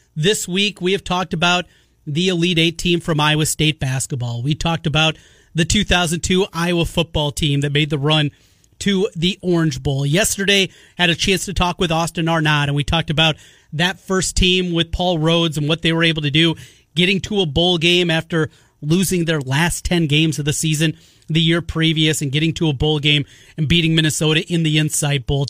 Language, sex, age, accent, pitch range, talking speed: English, male, 30-49, American, 150-190 Hz, 200 wpm